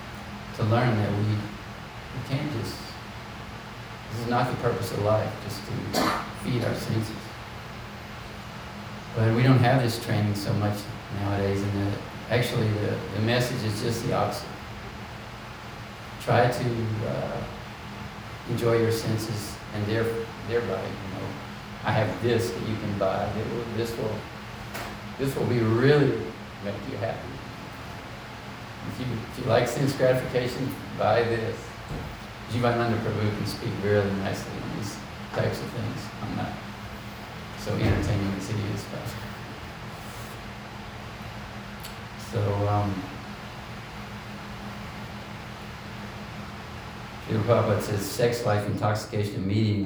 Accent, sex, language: American, male, English